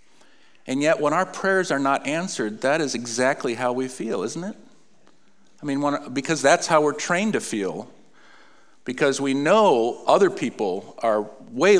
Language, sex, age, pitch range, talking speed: English, male, 50-69, 130-205 Hz, 170 wpm